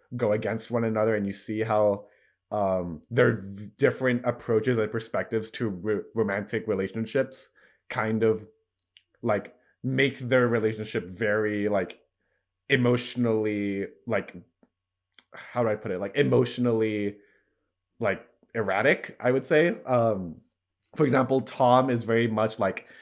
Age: 20-39